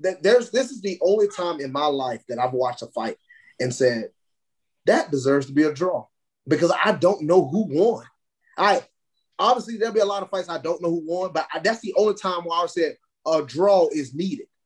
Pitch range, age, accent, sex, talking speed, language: 130-180 Hz, 30-49, American, male, 220 wpm, English